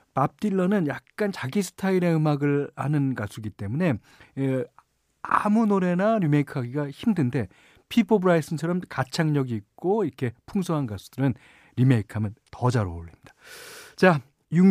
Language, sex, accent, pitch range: Korean, male, native, 110-165 Hz